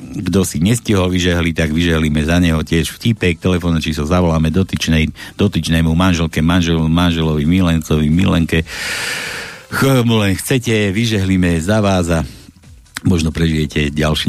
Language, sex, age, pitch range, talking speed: Slovak, male, 60-79, 80-95 Hz, 125 wpm